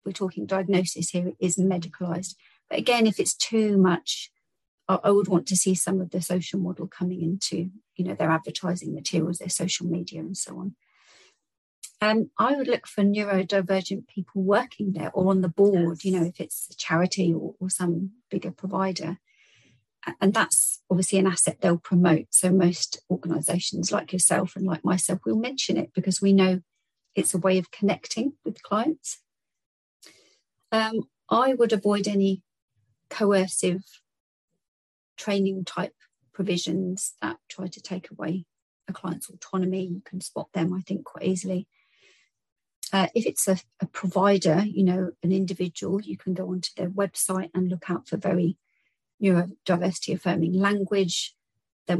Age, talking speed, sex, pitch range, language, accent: 40-59, 160 wpm, female, 180-200 Hz, English, British